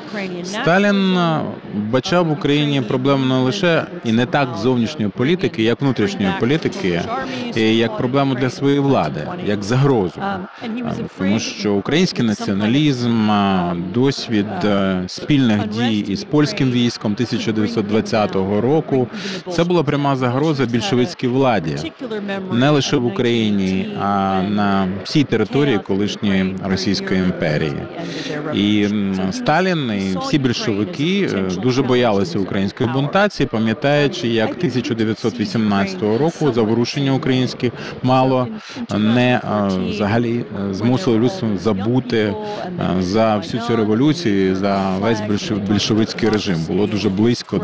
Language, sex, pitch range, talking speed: Ukrainian, male, 105-145 Hz, 105 wpm